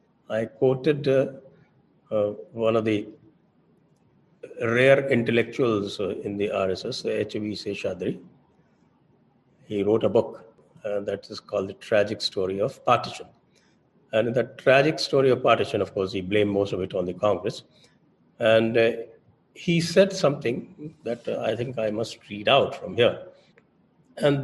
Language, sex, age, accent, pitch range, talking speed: English, male, 50-69, Indian, 115-150 Hz, 155 wpm